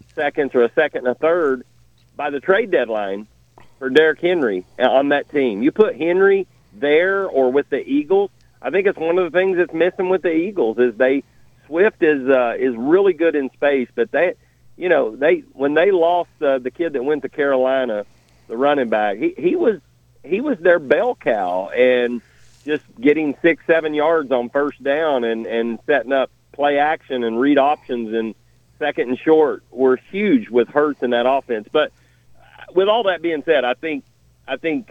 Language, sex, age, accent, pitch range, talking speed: English, male, 40-59, American, 120-155 Hz, 195 wpm